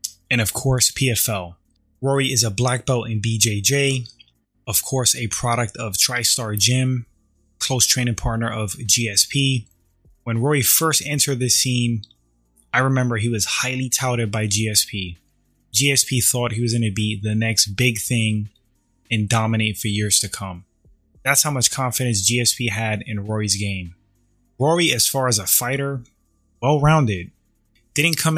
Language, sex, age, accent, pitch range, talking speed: English, male, 20-39, American, 105-130 Hz, 155 wpm